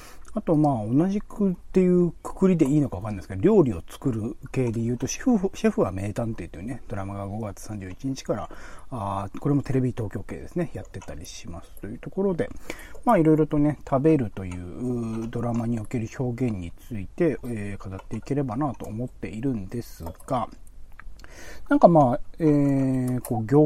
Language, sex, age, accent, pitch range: Japanese, male, 40-59, native, 100-150 Hz